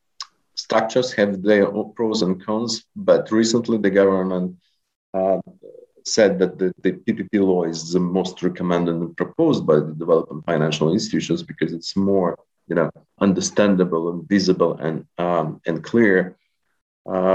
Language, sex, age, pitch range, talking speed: English, male, 50-69, 90-110 Hz, 140 wpm